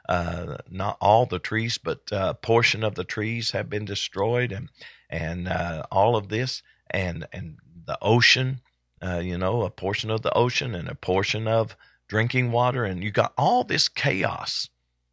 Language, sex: English, male